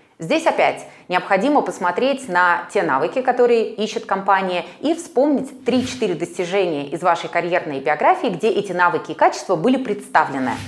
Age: 20-39